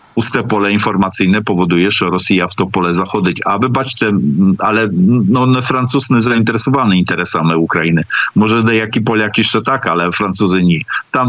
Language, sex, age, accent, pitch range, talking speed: Ukrainian, male, 50-69, Polish, 100-120 Hz, 155 wpm